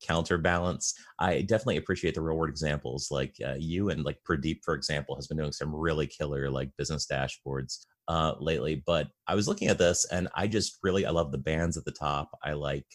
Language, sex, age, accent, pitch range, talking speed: English, male, 30-49, American, 70-85 Hz, 215 wpm